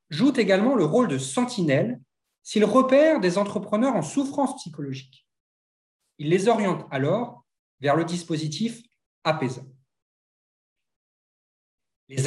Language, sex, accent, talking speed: French, male, French, 110 wpm